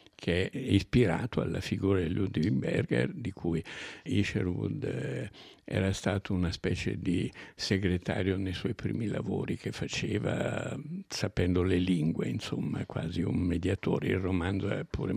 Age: 60-79